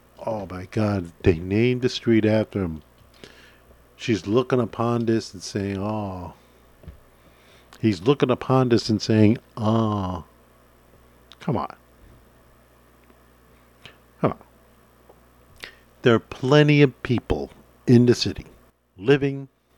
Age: 50-69